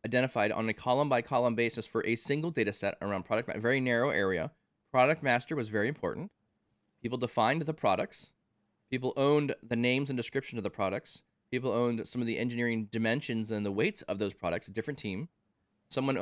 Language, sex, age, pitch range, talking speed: English, male, 20-39, 105-130 Hz, 190 wpm